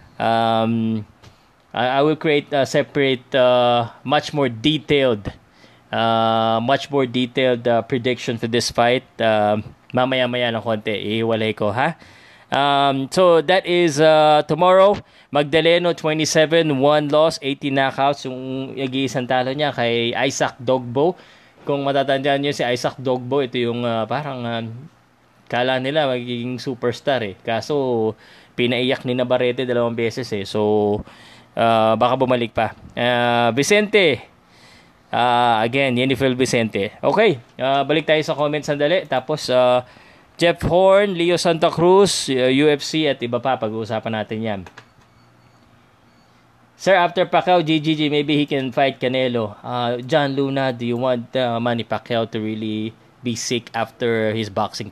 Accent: native